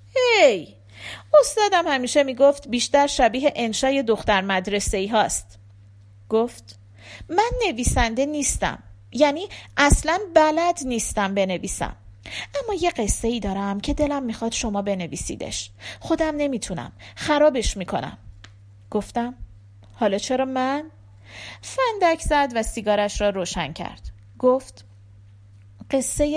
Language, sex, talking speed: Persian, female, 105 wpm